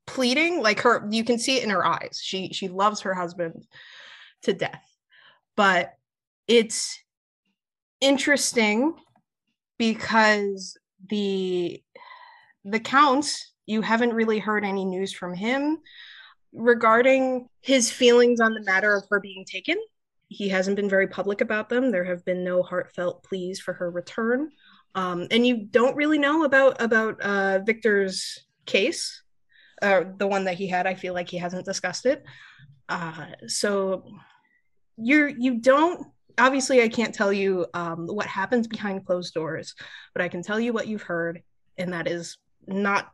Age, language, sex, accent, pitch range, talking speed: 20-39, English, female, American, 190-245 Hz, 155 wpm